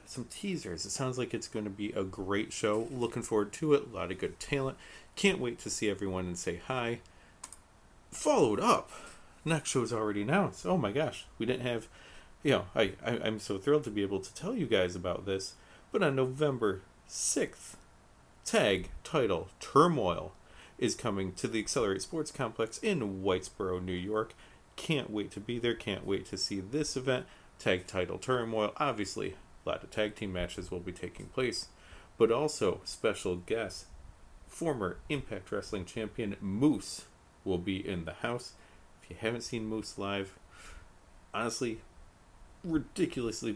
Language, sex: English, male